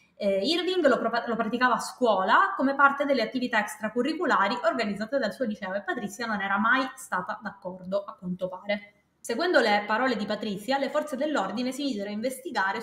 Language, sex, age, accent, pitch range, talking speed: Italian, female, 20-39, native, 200-260 Hz, 185 wpm